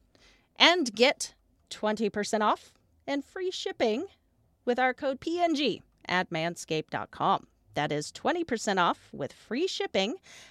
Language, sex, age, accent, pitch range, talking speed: English, female, 40-59, American, 175-270 Hz, 115 wpm